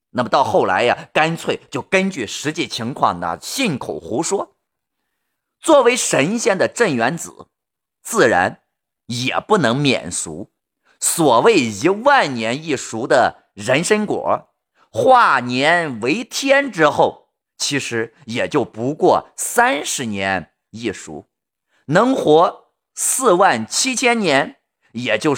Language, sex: Chinese, male